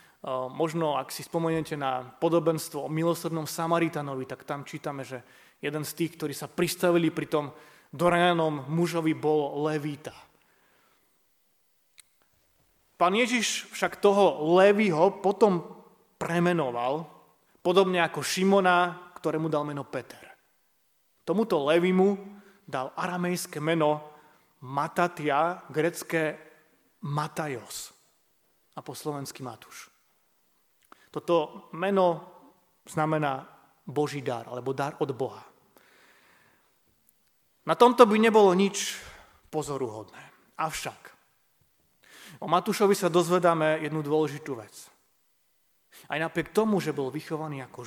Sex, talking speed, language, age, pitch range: male, 100 wpm, Slovak, 30-49, 150-180 Hz